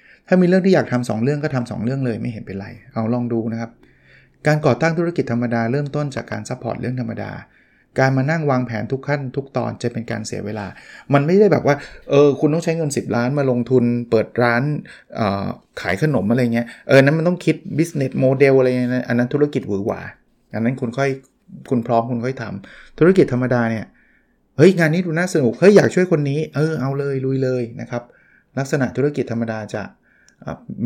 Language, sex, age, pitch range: Thai, male, 20-39, 115-145 Hz